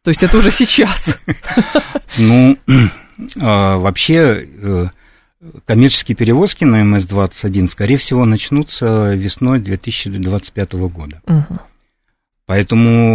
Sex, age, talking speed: male, 50-69, 80 wpm